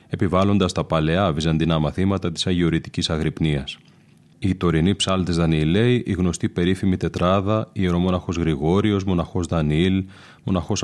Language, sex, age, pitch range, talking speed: Greek, male, 30-49, 85-95 Hz, 120 wpm